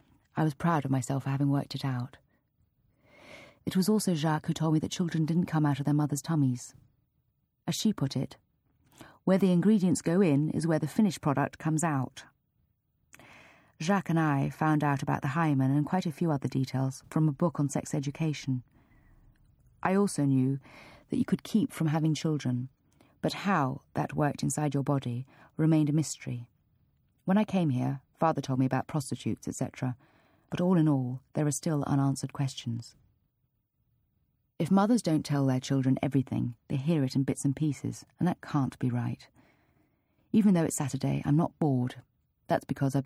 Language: English